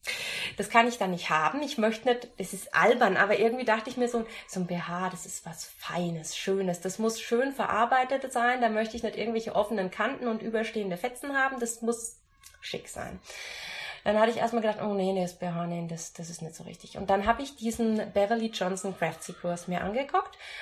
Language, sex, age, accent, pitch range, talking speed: German, female, 20-39, German, 190-235 Hz, 215 wpm